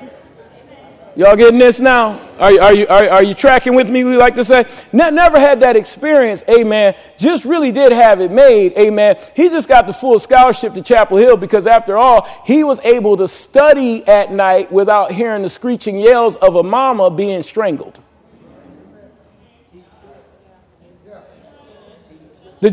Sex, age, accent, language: male, 40-59, American, English